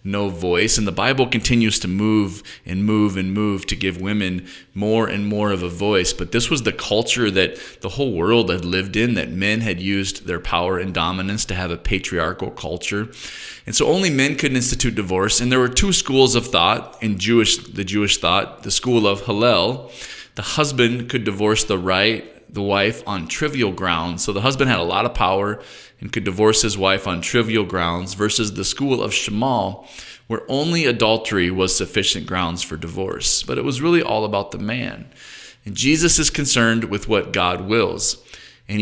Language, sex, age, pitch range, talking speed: English, male, 20-39, 95-120 Hz, 195 wpm